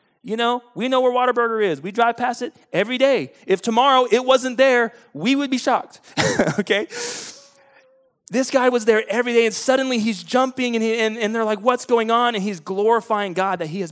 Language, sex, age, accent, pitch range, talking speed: English, male, 30-49, American, 175-240 Hz, 210 wpm